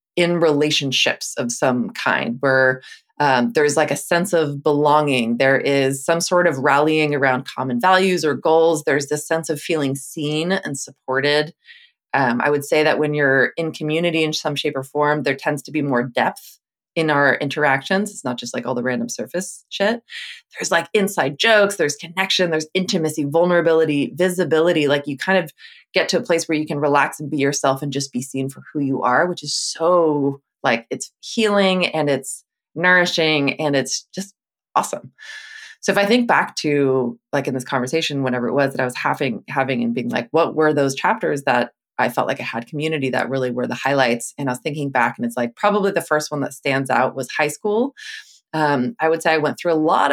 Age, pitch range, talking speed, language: 20-39, 140-175 Hz, 210 wpm, English